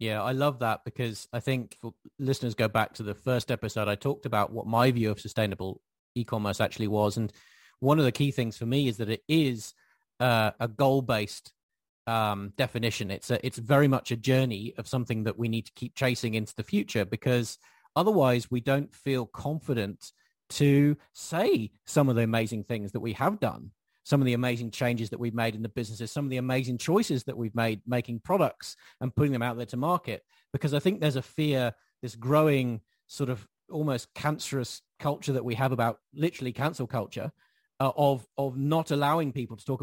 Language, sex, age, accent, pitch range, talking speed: English, male, 40-59, British, 115-140 Hz, 200 wpm